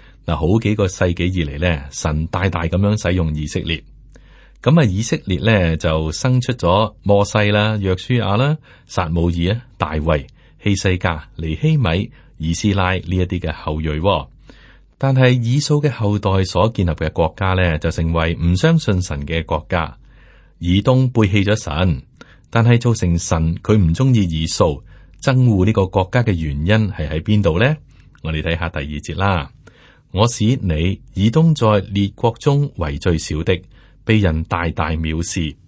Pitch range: 85-115 Hz